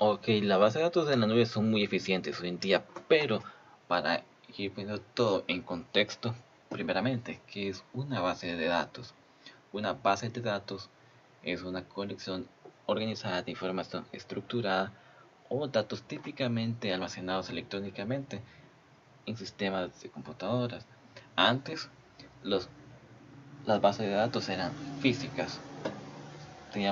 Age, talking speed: 20-39, 125 wpm